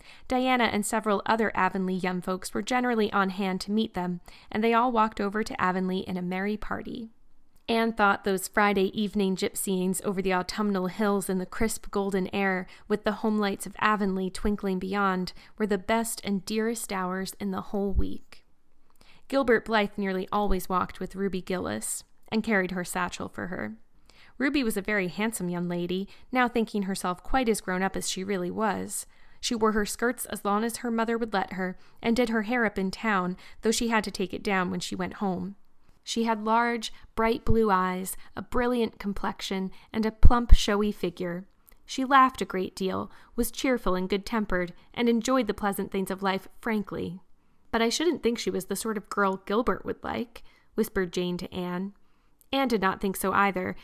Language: English